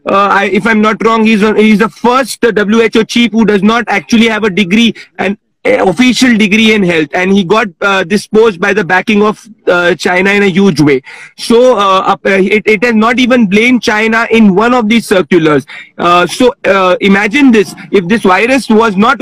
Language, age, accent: Hindi, 40-59, native